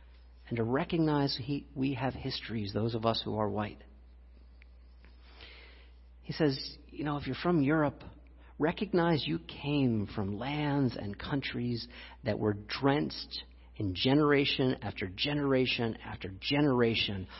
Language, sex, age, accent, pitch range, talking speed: English, male, 50-69, American, 100-145 Hz, 125 wpm